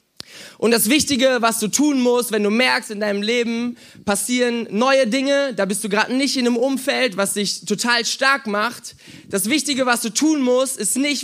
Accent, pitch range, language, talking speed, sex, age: German, 225-275 Hz, German, 200 wpm, male, 20-39